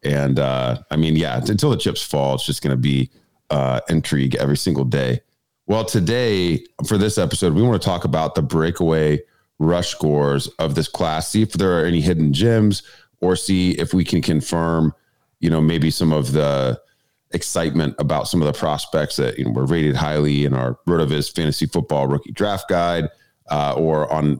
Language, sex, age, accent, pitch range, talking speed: English, male, 30-49, American, 75-90 Hz, 190 wpm